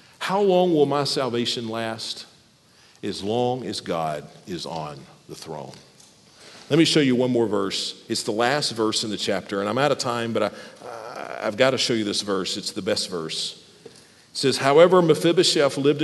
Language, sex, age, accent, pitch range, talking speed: English, male, 50-69, American, 115-165 Hz, 190 wpm